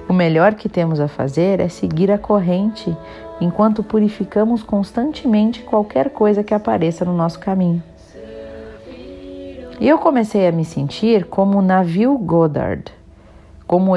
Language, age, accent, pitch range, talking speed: Portuguese, 40-59, Brazilian, 165-215 Hz, 135 wpm